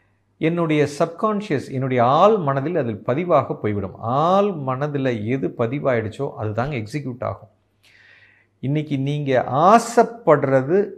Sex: male